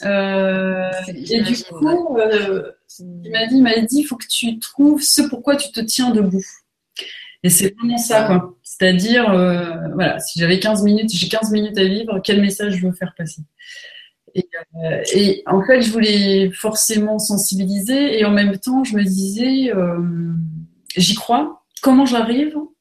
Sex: female